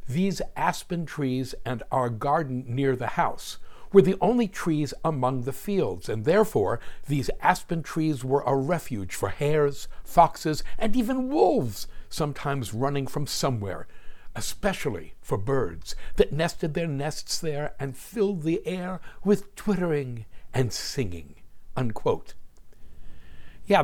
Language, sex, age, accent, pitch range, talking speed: English, male, 60-79, American, 125-155 Hz, 130 wpm